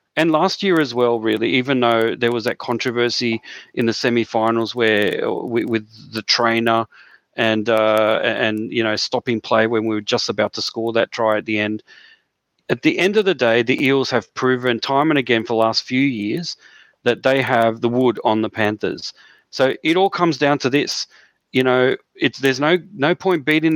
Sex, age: male, 40-59